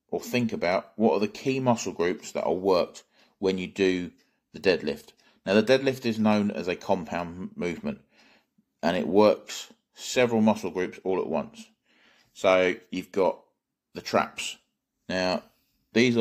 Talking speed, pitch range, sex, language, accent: 155 wpm, 90-115 Hz, male, English, British